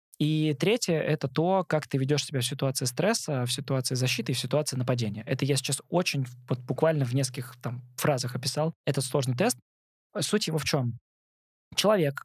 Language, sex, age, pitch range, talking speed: Russian, male, 20-39, 125-155 Hz, 185 wpm